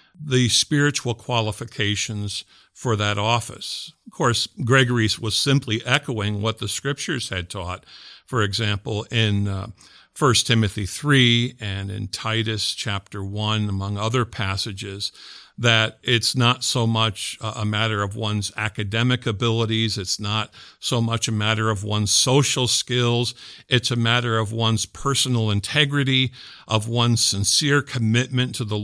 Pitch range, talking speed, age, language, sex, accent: 105-125 Hz, 135 wpm, 50-69, English, male, American